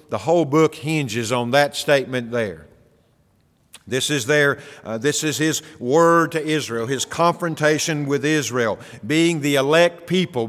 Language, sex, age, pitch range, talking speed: English, male, 50-69, 135-160 Hz, 150 wpm